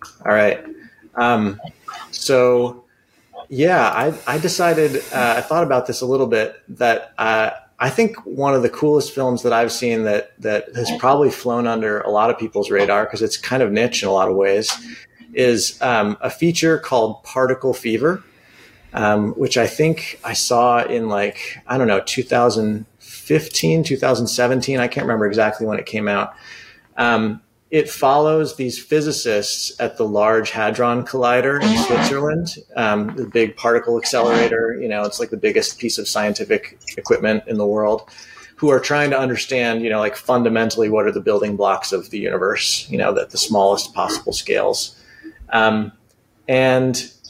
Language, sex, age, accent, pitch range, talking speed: English, male, 30-49, American, 110-140 Hz, 170 wpm